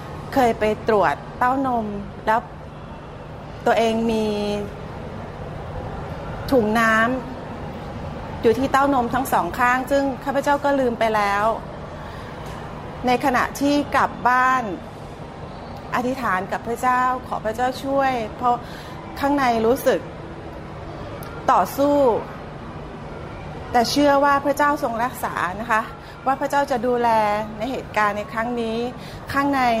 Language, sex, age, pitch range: Thai, female, 30-49, 225-275 Hz